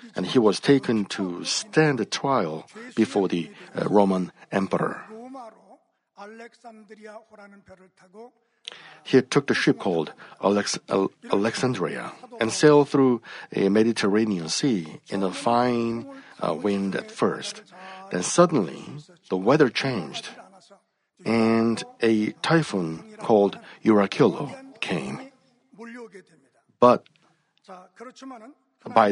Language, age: Korean, 60-79